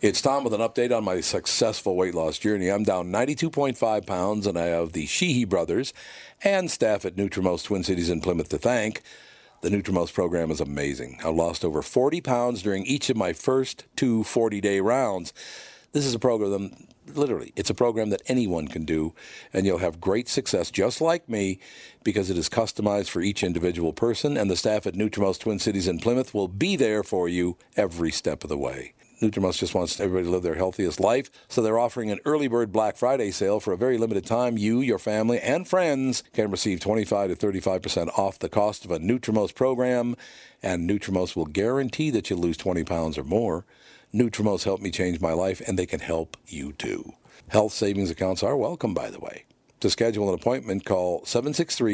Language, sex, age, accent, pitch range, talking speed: English, male, 50-69, American, 95-120 Hz, 200 wpm